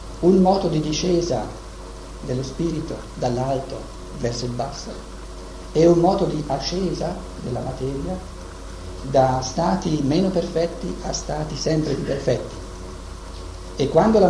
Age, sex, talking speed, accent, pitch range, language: 50-69, male, 120 wpm, native, 90-150 Hz, Italian